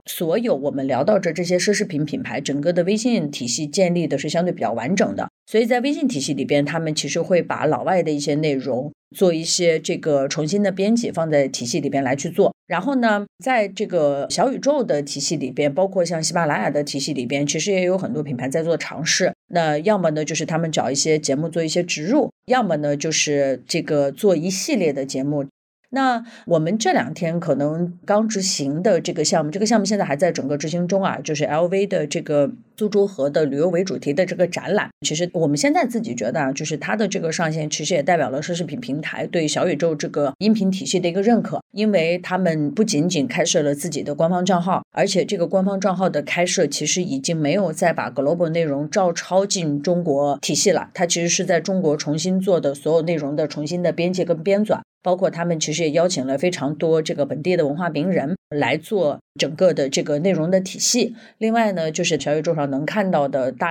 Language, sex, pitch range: Chinese, female, 150-190 Hz